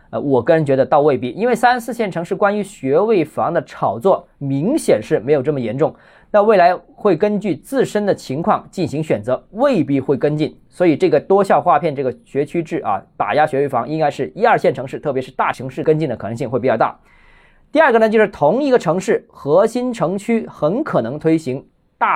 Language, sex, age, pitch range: Chinese, male, 20-39, 135-210 Hz